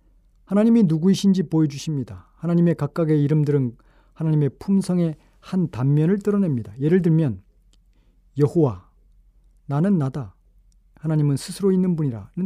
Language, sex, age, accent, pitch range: Korean, male, 40-59, native, 115-170 Hz